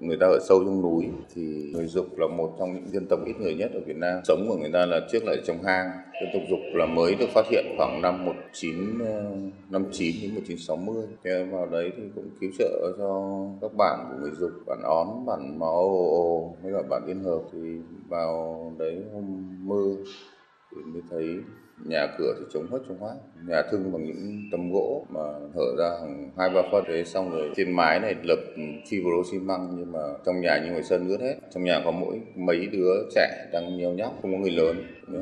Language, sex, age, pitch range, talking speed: Vietnamese, male, 20-39, 85-100 Hz, 220 wpm